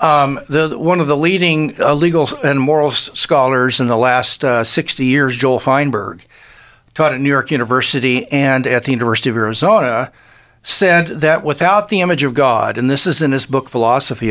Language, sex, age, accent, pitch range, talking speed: English, male, 60-79, American, 130-175 Hz, 180 wpm